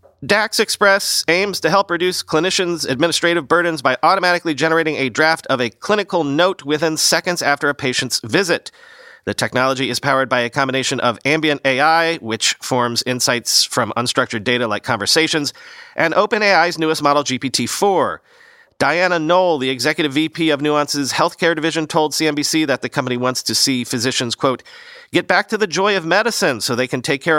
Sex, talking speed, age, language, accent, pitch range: male, 170 wpm, 40-59, English, American, 130-170 Hz